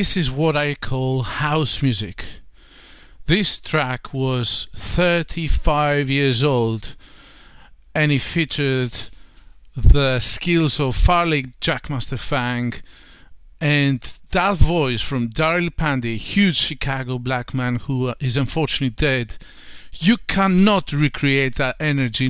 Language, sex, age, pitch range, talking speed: English, male, 40-59, 120-150 Hz, 110 wpm